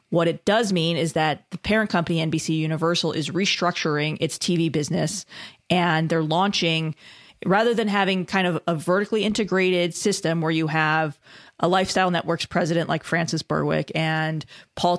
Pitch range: 160-180 Hz